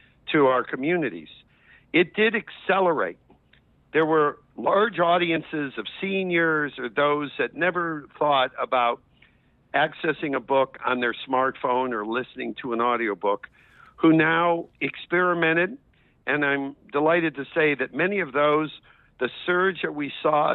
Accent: American